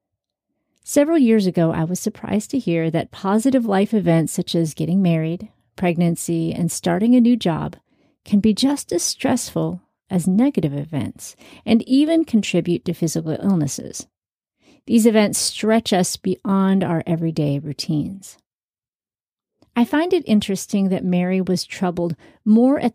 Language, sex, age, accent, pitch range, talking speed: English, female, 40-59, American, 170-230 Hz, 140 wpm